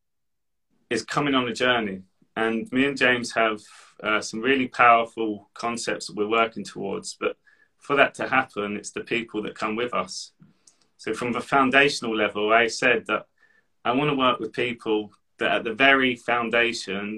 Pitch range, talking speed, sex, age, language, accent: 110-135 Hz, 170 wpm, male, 30-49, English, British